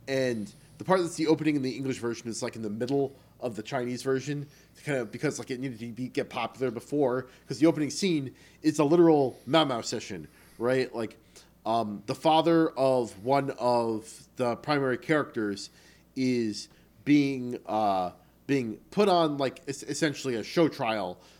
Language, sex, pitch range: English, male, 120-155 Hz